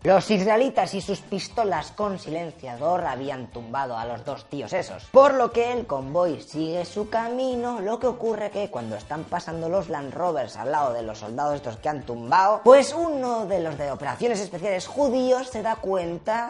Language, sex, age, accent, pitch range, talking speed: English, female, 20-39, Spanish, 160-255 Hz, 190 wpm